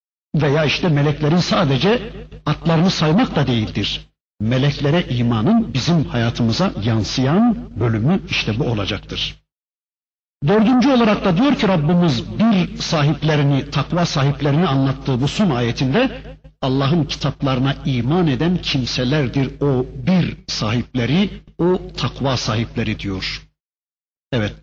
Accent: native